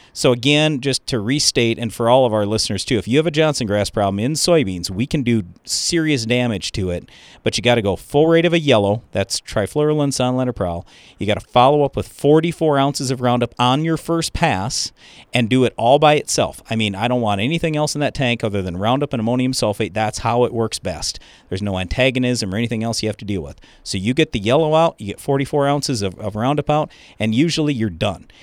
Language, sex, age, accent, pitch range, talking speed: English, male, 40-59, American, 105-140 Hz, 235 wpm